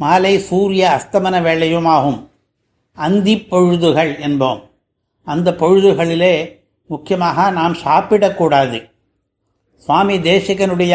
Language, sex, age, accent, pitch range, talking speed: Tamil, male, 60-79, native, 175-200 Hz, 80 wpm